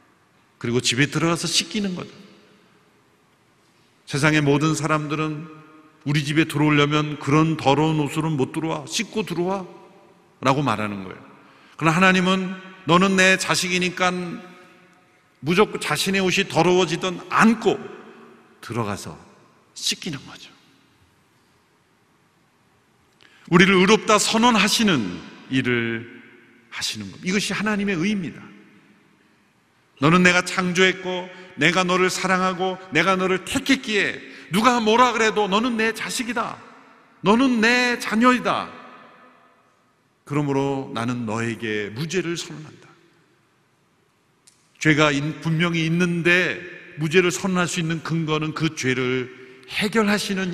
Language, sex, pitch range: Korean, male, 135-190 Hz